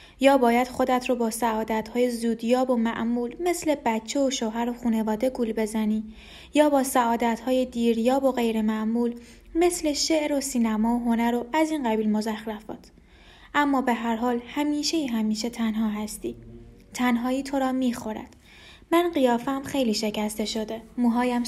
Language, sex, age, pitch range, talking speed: Persian, female, 20-39, 225-265 Hz, 165 wpm